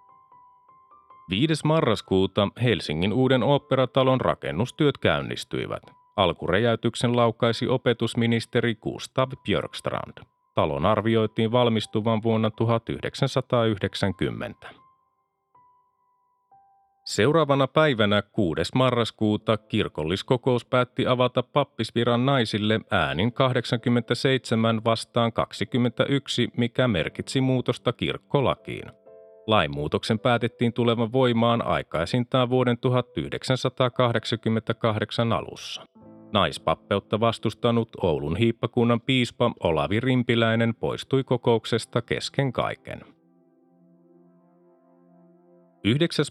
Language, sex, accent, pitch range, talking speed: Finnish, male, native, 110-130 Hz, 70 wpm